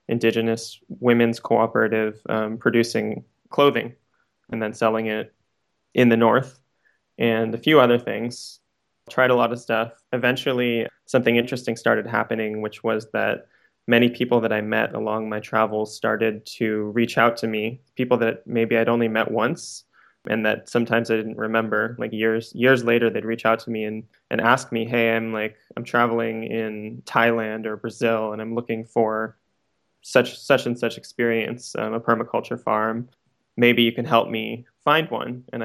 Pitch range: 110-120 Hz